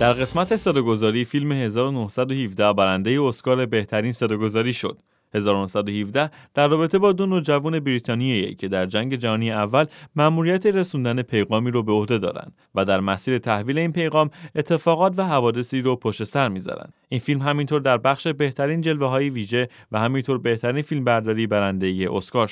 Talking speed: 155 wpm